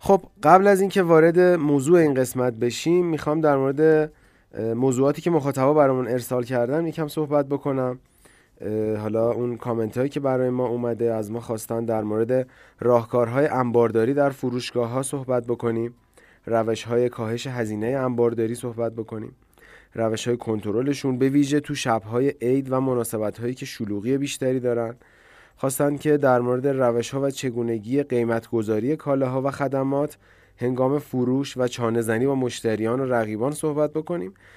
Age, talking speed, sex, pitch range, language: 30-49, 135 wpm, male, 115-145 Hz, Persian